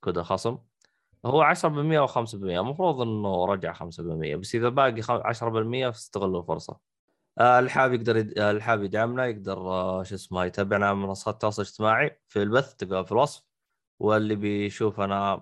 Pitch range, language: 95-120 Hz, Arabic